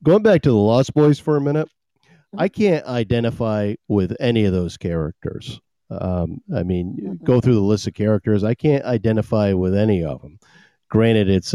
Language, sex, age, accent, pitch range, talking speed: English, male, 40-59, American, 95-125 Hz, 180 wpm